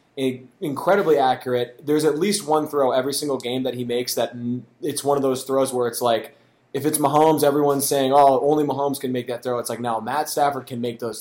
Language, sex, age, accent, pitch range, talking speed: English, male, 20-39, American, 125-145 Hz, 225 wpm